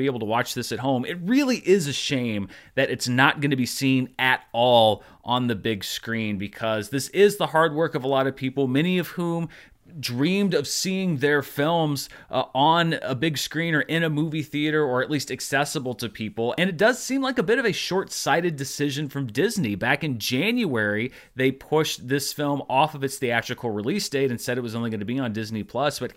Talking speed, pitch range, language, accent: 220 wpm, 125-160 Hz, English, American